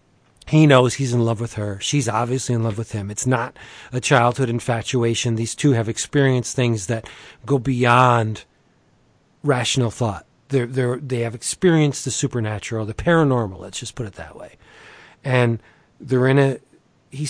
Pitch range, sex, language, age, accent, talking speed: 115-140 Hz, male, English, 40-59, American, 160 wpm